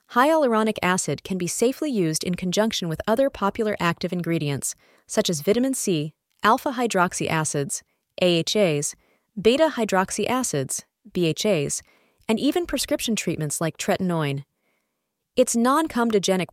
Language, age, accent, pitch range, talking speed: English, 30-49, American, 165-245 Hz, 120 wpm